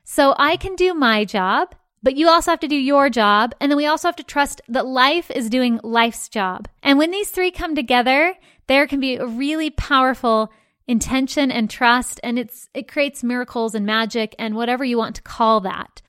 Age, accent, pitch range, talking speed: 20-39, American, 225-285 Hz, 210 wpm